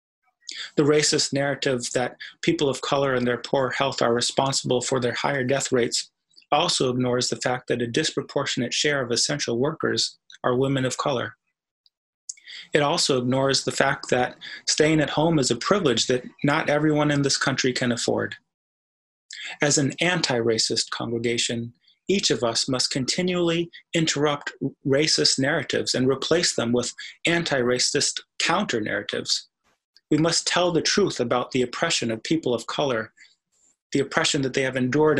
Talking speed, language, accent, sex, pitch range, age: 150 wpm, English, American, male, 125-150 Hz, 30-49